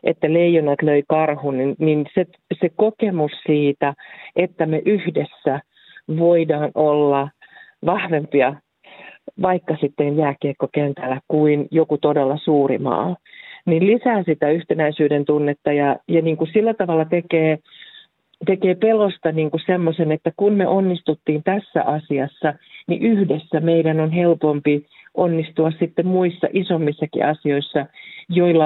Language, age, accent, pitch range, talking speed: Finnish, 40-59, native, 150-175 Hz, 115 wpm